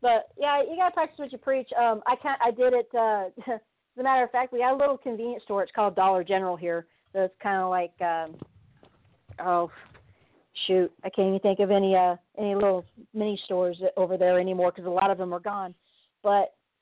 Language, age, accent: English, 40-59, American